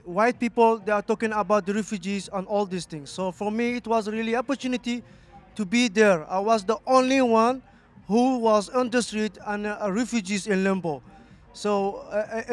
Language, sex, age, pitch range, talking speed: English, male, 20-39, 205-245 Hz, 185 wpm